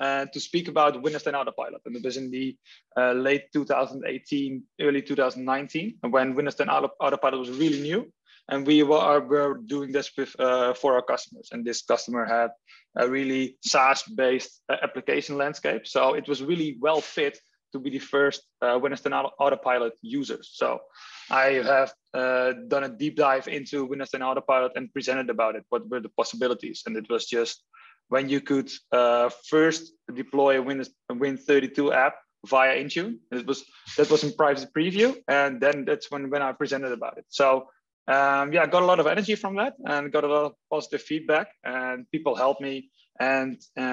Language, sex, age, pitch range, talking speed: English, male, 20-39, 125-145 Hz, 180 wpm